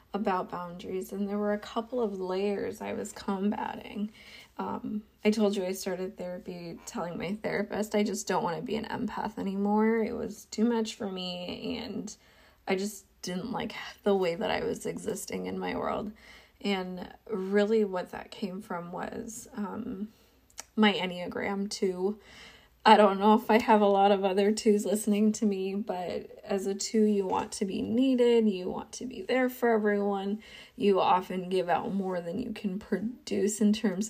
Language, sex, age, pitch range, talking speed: English, female, 20-39, 195-220 Hz, 180 wpm